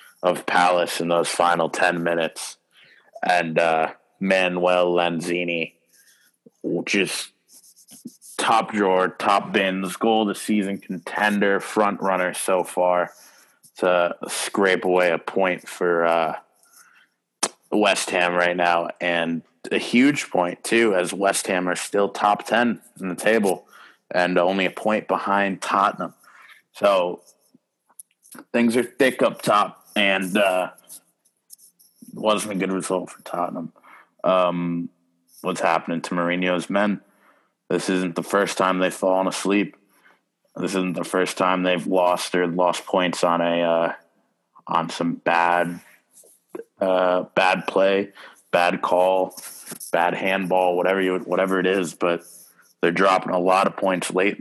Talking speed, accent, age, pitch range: 130 wpm, American, 20-39, 85-95 Hz